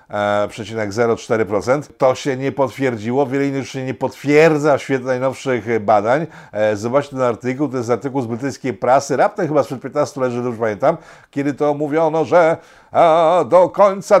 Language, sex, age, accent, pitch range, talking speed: Polish, male, 50-69, native, 125-165 Hz, 170 wpm